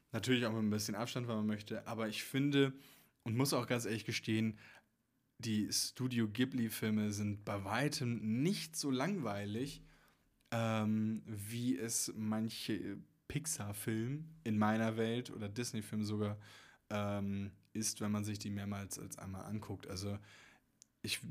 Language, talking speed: German, 140 wpm